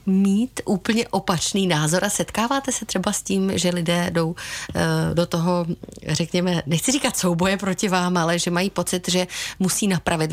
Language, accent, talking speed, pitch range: Czech, native, 165 wpm, 165-200 Hz